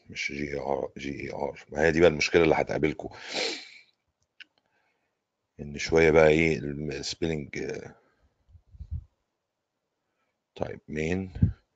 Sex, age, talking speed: male, 50-69, 85 wpm